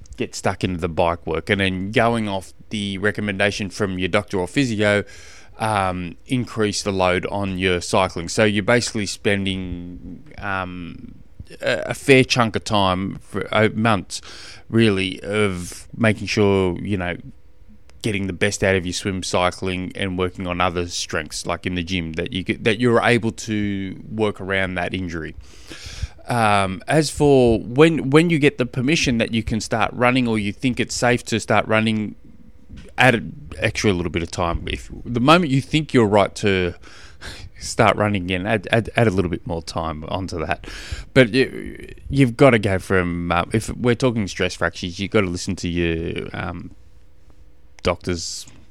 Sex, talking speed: male, 175 wpm